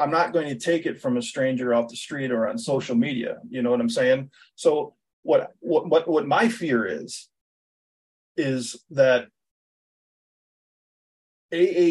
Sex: male